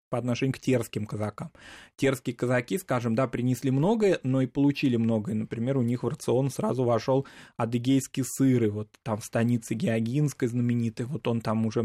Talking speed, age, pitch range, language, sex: 175 wpm, 20-39, 110-135 Hz, Russian, male